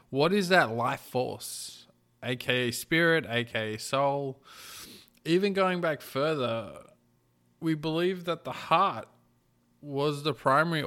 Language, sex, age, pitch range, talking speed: English, male, 20-39, 115-140 Hz, 115 wpm